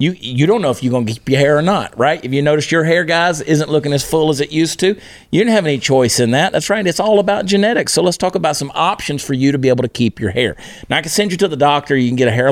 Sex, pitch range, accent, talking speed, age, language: male, 115-150 Hz, American, 330 wpm, 40-59, English